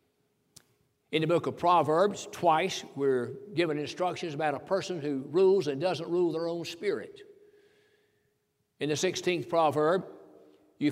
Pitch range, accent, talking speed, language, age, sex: 155-240 Hz, American, 135 wpm, English, 60-79, male